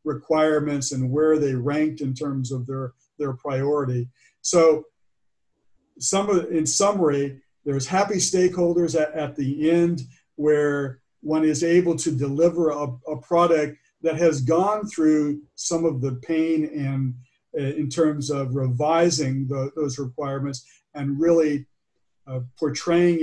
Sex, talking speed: male, 135 wpm